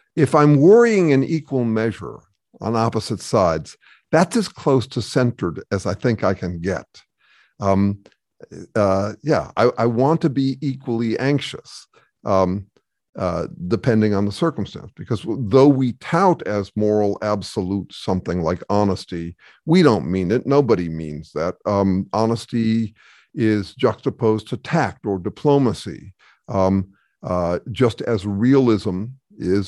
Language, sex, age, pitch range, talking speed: English, male, 50-69, 100-135 Hz, 135 wpm